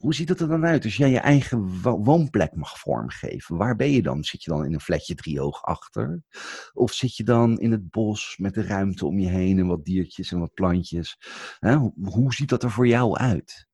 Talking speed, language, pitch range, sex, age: 225 wpm, Dutch, 95-125 Hz, male, 50-69